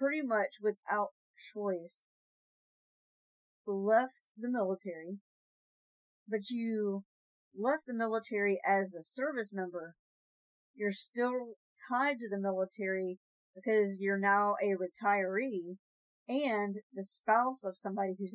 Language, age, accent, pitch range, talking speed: English, 50-69, American, 180-215 Hz, 110 wpm